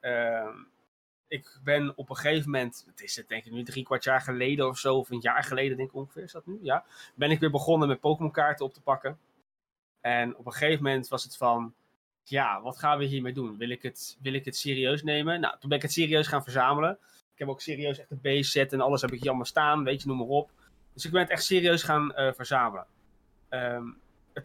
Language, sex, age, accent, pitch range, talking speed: Dutch, male, 20-39, Dutch, 130-160 Hz, 245 wpm